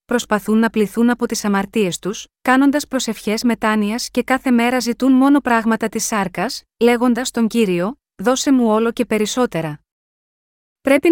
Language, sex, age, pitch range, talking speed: Greek, female, 30-49, 205-255 Hz, 145 wpm